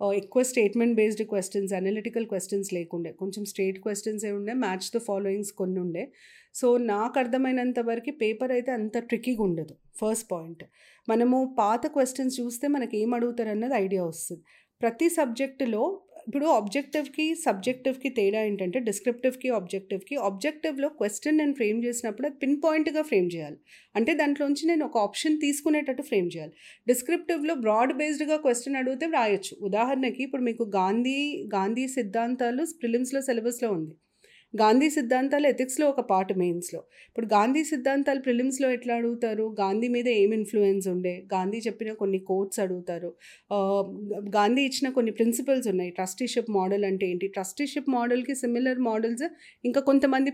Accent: native